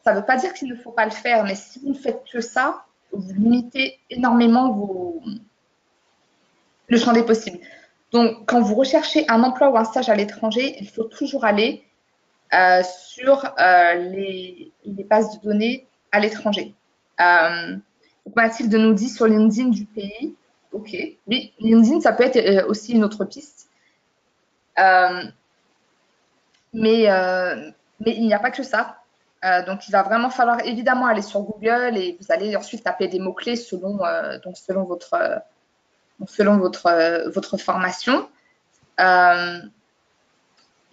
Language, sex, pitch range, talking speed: French, female, 185-245 Hz, 150 wpm